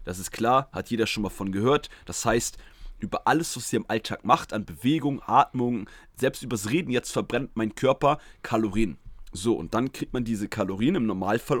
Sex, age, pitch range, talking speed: male, 30-49, 105-135 Hz, 195 wpm